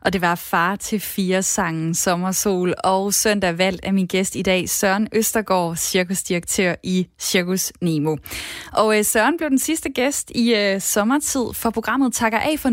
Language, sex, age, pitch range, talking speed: Danish, female, 20-39, 190-235 Hz, 175 wpm